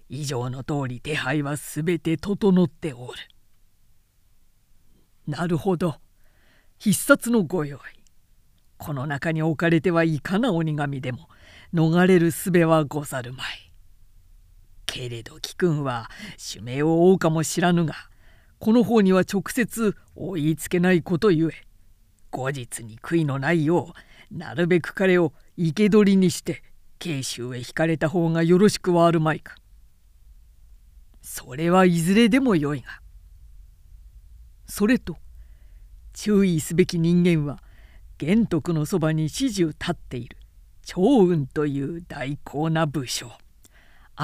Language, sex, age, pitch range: Japanese, female, 50-69, 115-175 Hz